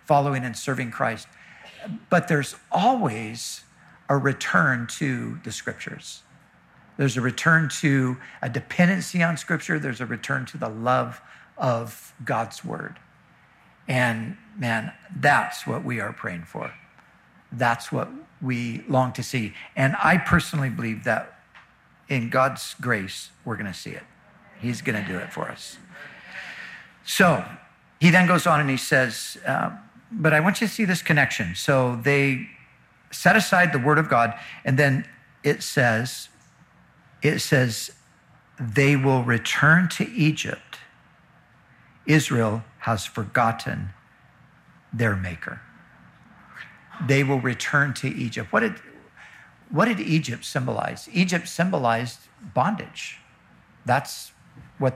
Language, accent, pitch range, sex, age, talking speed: English, American, 120-155 Hz, male, 60-79, 130 wpm